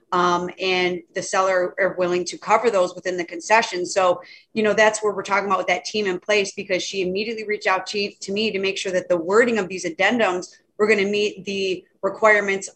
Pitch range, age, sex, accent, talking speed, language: 185-215 Hz, 30-49, female, American, 220 wpm, English